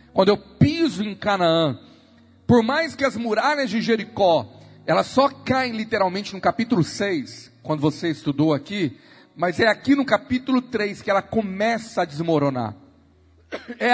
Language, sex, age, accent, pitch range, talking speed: Portuguese, male, 40-59, Brazilian, 170-240 Hz, 150 wpm